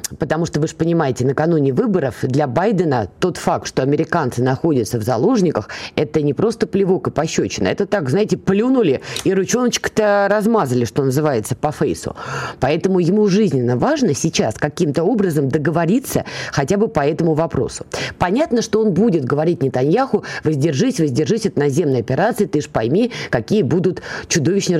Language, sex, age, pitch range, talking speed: Russian, female, 20-39, 145-200 Hz, 150 wpm